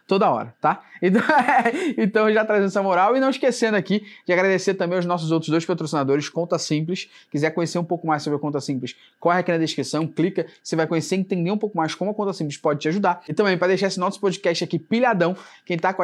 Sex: male